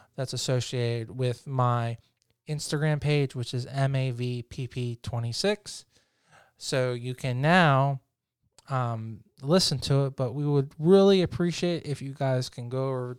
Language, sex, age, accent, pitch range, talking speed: English, male, 20-39, American, 125-145 Hz, 125 wpm